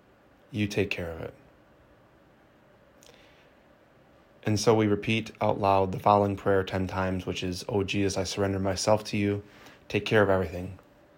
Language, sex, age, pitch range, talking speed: English, male, 20-39, 95-105 Hz, 155 wpm